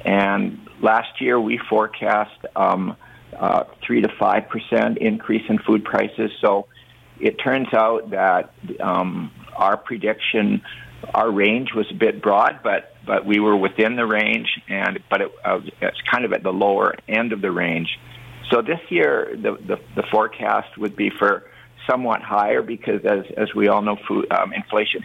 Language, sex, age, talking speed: English, male, 50-69, 170 wpm